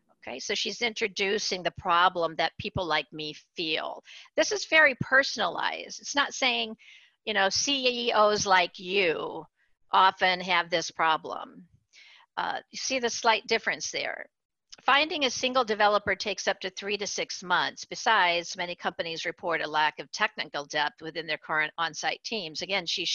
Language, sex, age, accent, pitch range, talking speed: English, female, 50-69, American, 175-225 Hz, 160 wpm